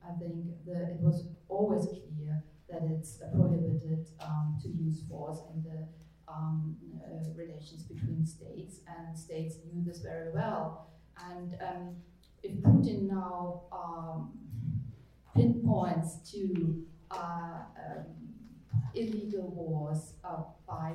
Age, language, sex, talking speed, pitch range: 30-49, English, female, 115 wpm, 160-175 Hz